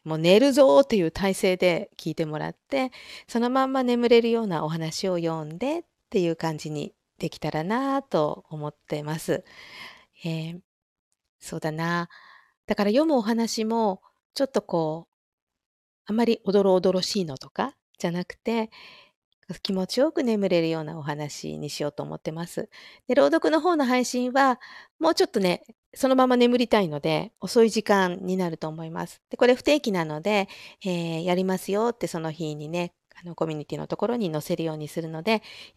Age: 50-69